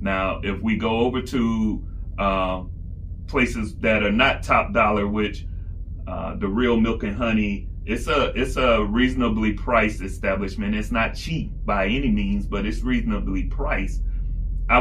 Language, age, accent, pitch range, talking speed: English, 30-49, American, 90-115 Hz, 155 wpm